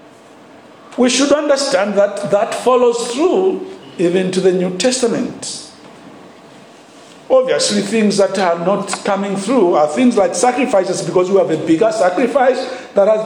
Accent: Nigerian